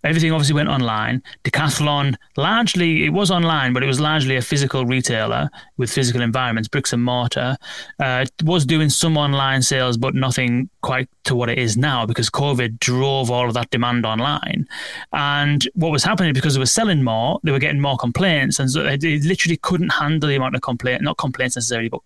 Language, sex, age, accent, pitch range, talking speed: English, male, 30-49, British, 125-160 Hz, 200 wpm